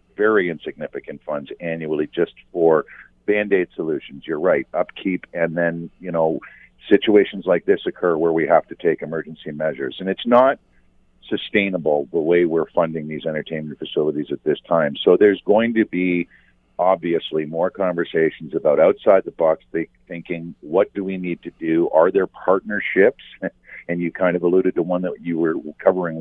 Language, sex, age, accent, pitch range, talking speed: English, male, 50-69, American, 80-95 Hz, 165 wpm